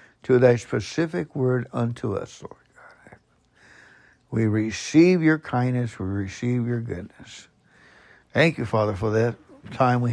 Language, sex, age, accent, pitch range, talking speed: English, male, 60-79, American, 110-150 Hz, 130 wpm